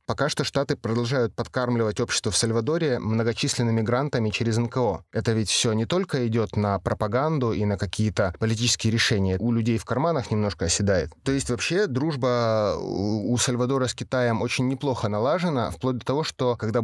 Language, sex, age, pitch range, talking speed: Russian, male, 20-39, 110-130 Hz, 170 wpm